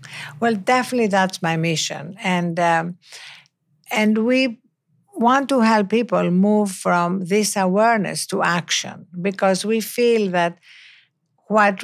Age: 60-79